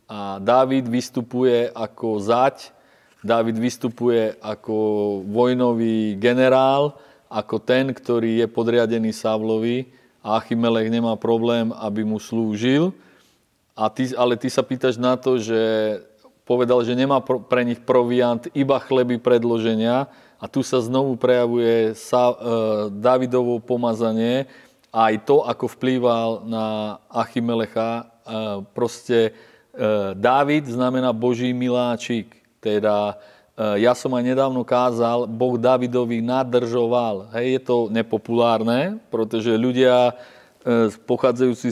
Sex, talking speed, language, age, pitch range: male, 110 wpm, Slovak, 30-49, 115-130 Hz